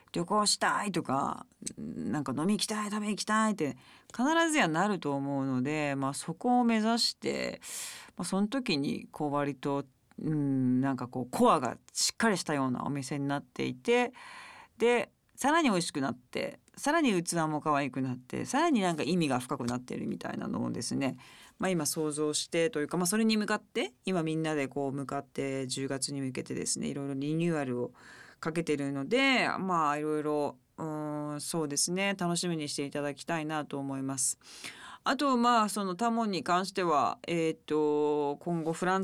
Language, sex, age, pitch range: Japanese, female, 40-59, 145-215 Hz